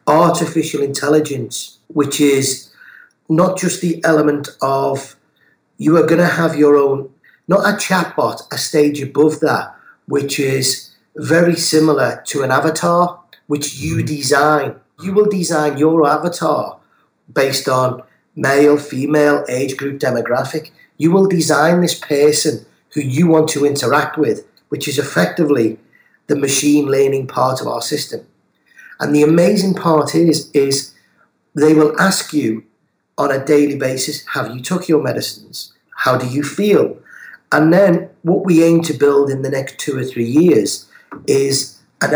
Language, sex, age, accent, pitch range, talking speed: English, male, 40-59, British, 135-160 Hz, 150 wpm